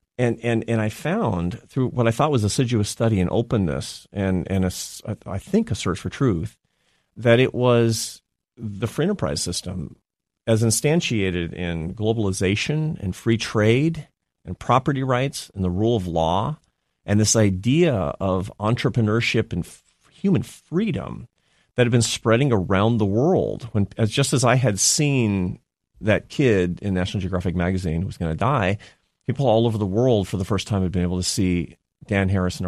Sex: male